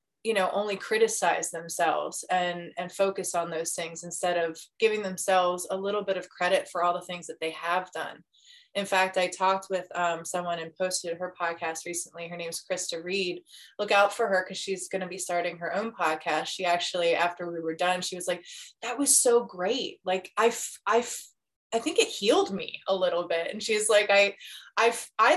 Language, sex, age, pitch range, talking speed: English, female, 20-39, 175-200 Hz, 210 wpm